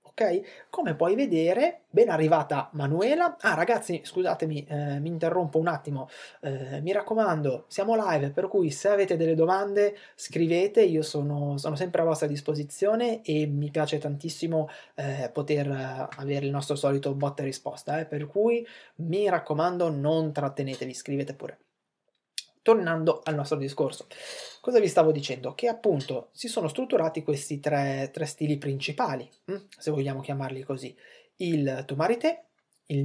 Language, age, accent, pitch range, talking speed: Italian, 20-39, native, 140-190 Hz, 145 wpm